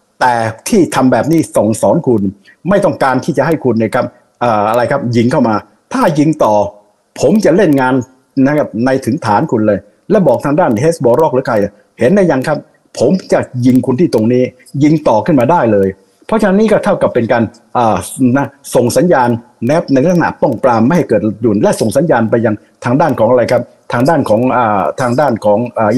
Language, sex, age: Thai, male, 60-79